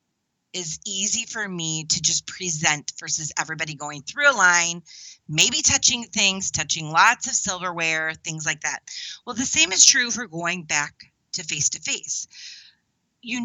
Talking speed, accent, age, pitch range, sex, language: 155 wpm, American, 30-49, 160-220 Hz, female, English